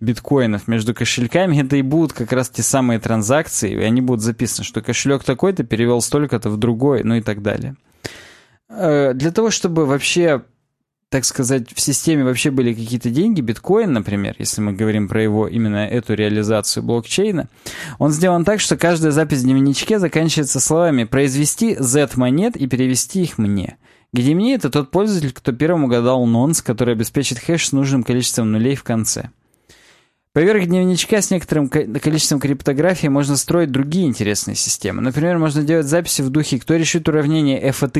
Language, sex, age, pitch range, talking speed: Russian, male, 20-39, 120-155 Hz, 165 wpm